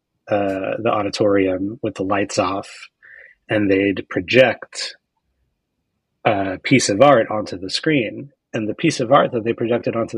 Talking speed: 155 wpm